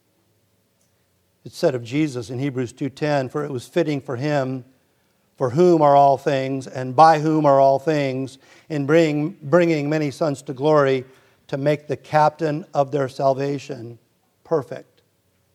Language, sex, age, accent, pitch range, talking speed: English, male, 50-69, American, 125-150 Hz, 145 wpm